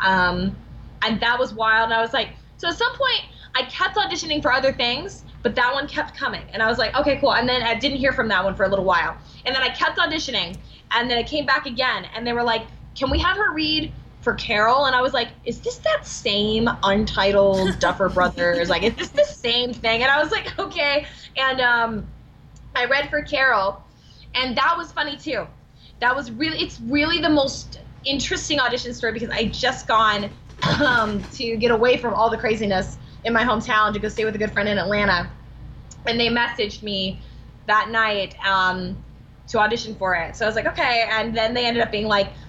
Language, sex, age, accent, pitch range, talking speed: English, female, 10-29, American, 215-275 Hz, 220 wpm